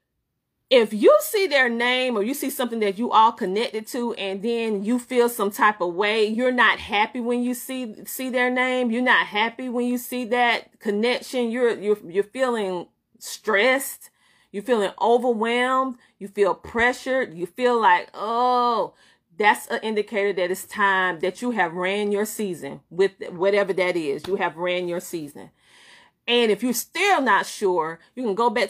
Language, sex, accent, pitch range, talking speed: English, female, American, 195-260 Hz, 180 wpm